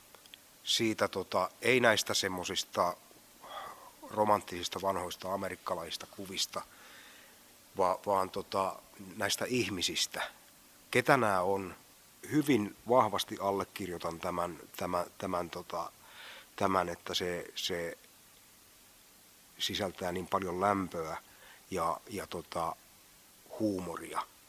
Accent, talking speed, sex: native, 85 wpm, male